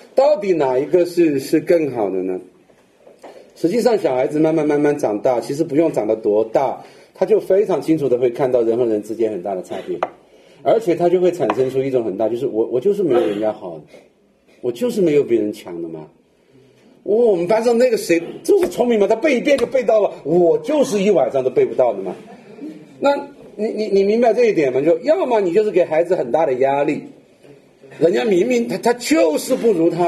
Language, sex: Chinese, male